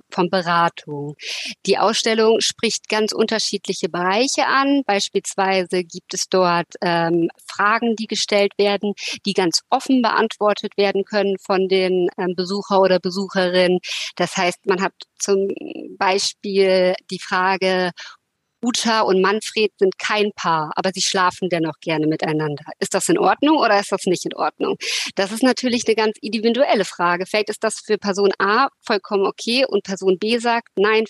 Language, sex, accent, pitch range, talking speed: German, female, German, 185-220 Hz, 155 wpm